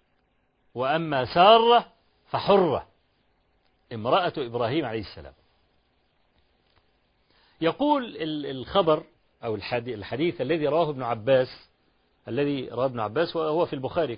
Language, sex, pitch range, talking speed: Arabic, male, 130-195 Hz, 95 wpm